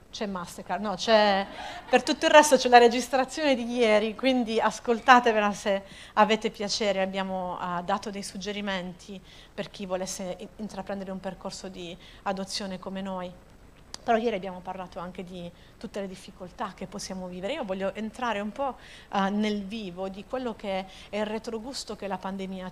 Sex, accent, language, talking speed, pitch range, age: female, native, Italian, 165 wpm, 190-230 Hz, 40-59